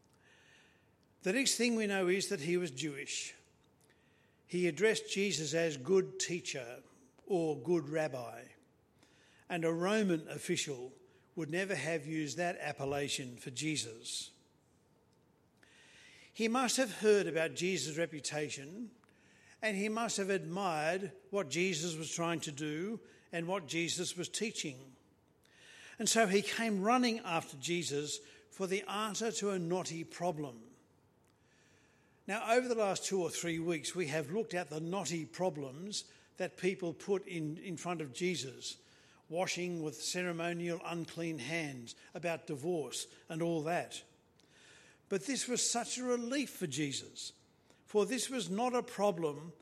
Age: 50-69